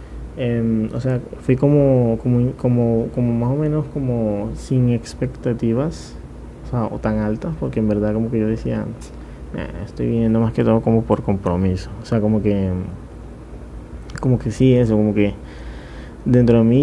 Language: Spanish